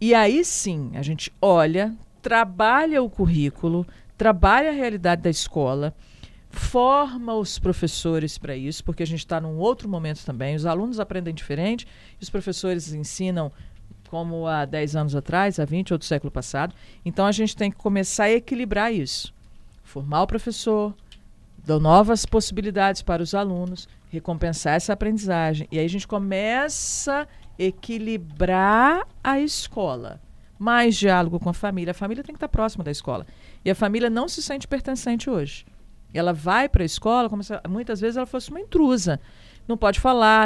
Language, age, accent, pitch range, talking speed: Portuguese, 50-69, Brazilian, 165-230 Hz, 165 wpm